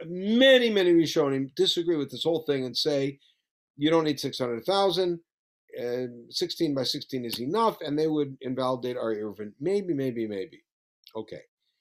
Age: 50-69